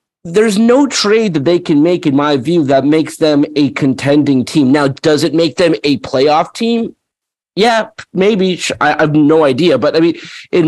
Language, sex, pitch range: English, male, 145-185 Hz